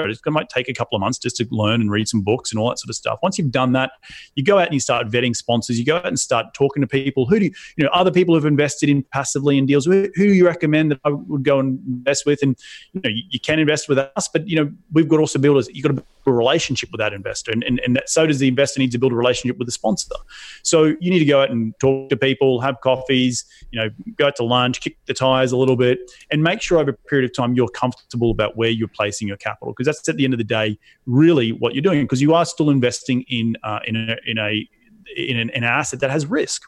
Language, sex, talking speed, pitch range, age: English, male, 290 wpm, 115-145 Hz, 30-49